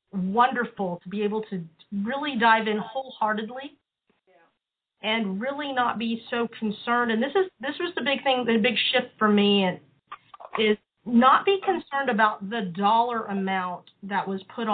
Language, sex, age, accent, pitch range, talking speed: English, female, 40-59, American, 205-255 Hz, 165 wpm